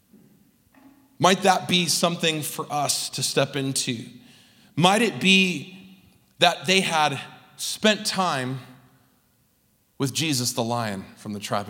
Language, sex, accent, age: English, male, American, 30-49